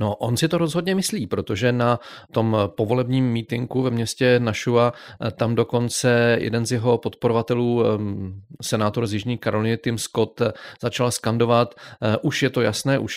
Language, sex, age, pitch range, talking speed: Czech, male, 40-59, 105-120 Hz, 150 wpm